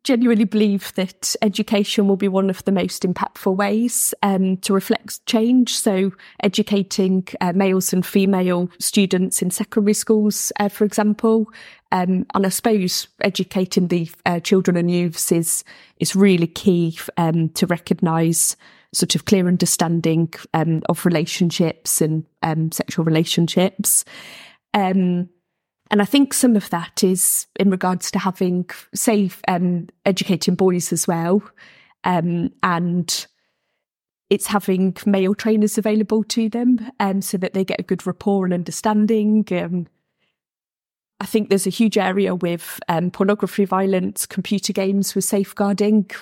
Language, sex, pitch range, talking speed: English, female, 180-210 Hz, 145 wpm